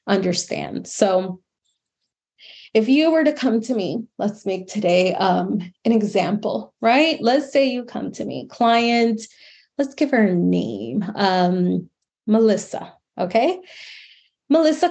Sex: female